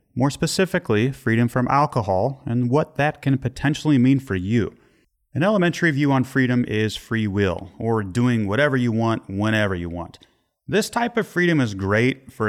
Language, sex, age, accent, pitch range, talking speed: English, male, 30-49, American, 115-145 Hz, 175 wpm